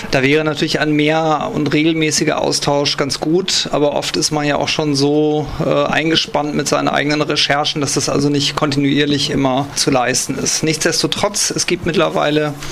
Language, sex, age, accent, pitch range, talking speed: German, male, 40-59, German, 145-160 Hz, 175 wpm